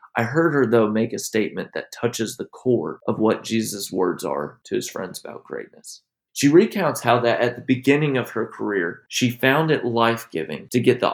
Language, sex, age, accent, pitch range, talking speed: English, male, 30-49, American, 110-130 Hz, 205 wpm